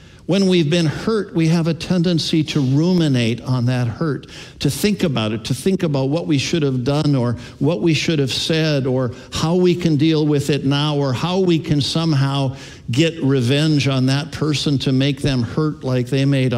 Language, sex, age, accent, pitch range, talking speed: English, male, 60-79, American, 115-150 Hz, 205 wpm